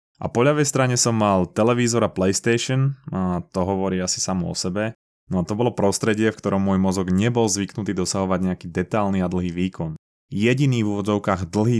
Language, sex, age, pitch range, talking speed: Slovak, male, 20-39, 95-120 Hz, 190 wpm